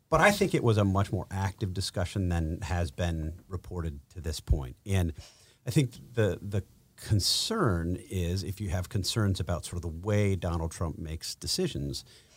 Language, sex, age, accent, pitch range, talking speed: English, male, 50-69, American, 85-110 Hz, 180 wpm